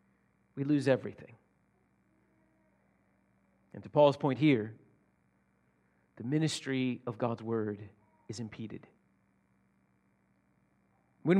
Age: 40-59